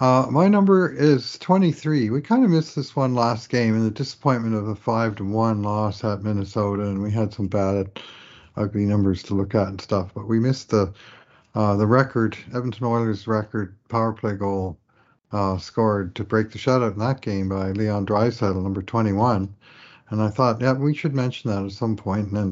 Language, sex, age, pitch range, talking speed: English, male, 50-69, 105-125 Hz, 200 wpm